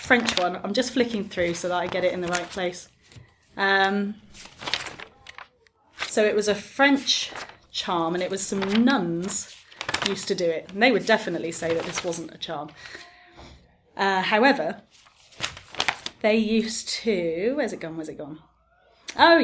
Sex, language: female, English